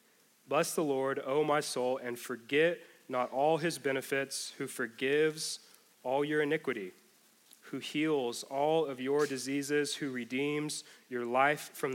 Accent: American